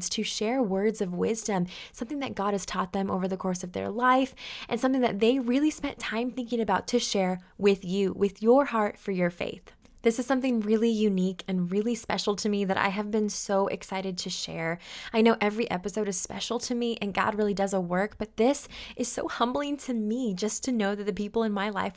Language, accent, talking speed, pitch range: English, American, 230 wpm, 200-245 Hz